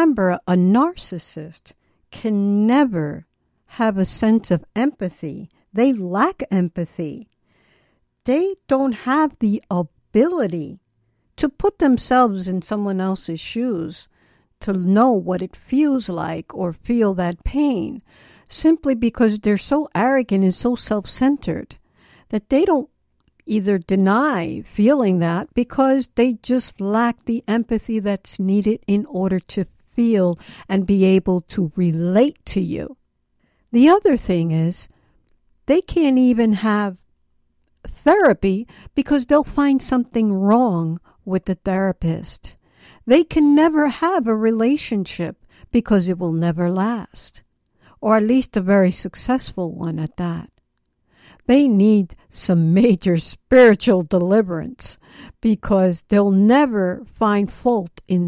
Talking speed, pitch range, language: 125 wpm, 185-250 Hz, English